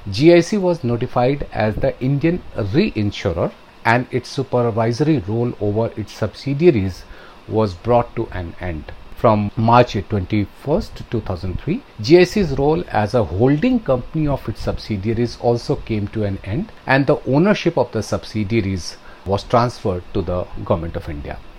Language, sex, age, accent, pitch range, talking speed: English, male, 40-59, Indian, 100-140 Hz, 140 wpm